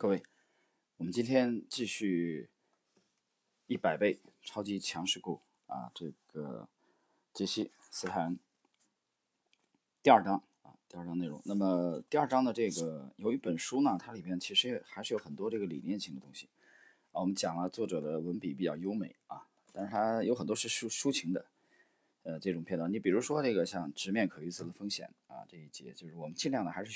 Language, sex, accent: Chinese, male, native